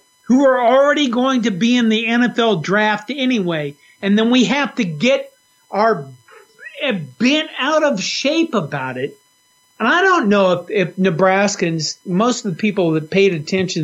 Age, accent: 50-69, American